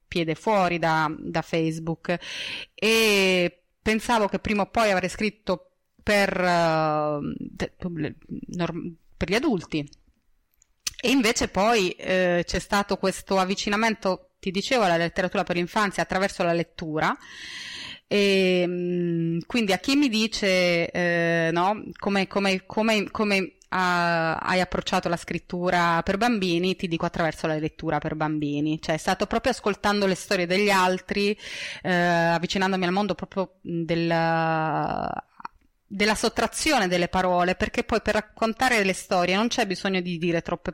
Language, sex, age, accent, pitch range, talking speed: Italian, female, 20-39, native, 175-205 Hz, 135 wpm